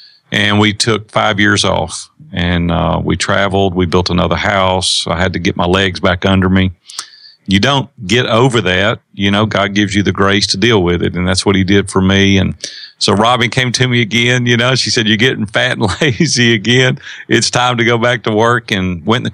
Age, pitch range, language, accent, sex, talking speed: 40-59, 95-115 Hz, English, American, male, 230 wpm